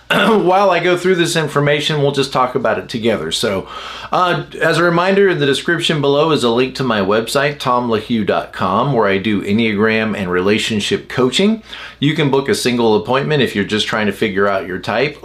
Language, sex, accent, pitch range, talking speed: English, male, American, 120-165 Hz, 195 wpm